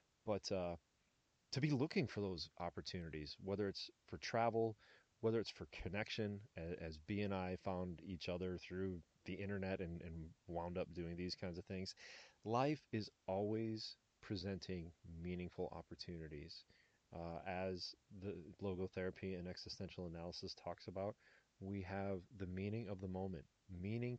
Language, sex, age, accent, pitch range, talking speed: English, male, 30-49, American, 90-110 Hz, 145 wpm